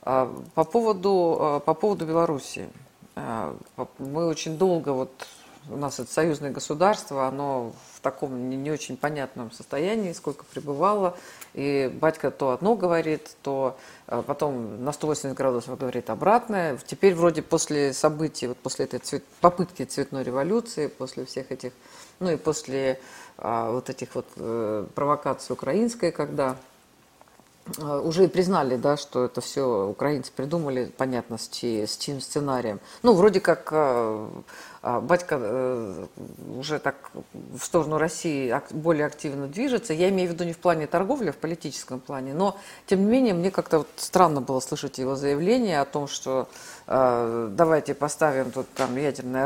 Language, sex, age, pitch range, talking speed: Russian, female, 50-69, 130-175 Hz, 145 wpm